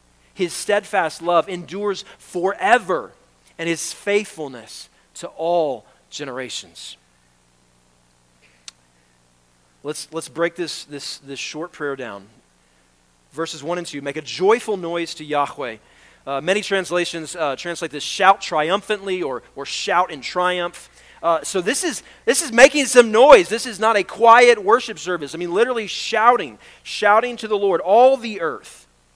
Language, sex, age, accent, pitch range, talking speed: English, male, 40-59, American, 135-195 Hz, 140 wpm